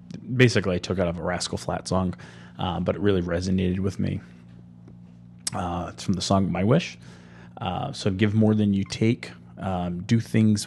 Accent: American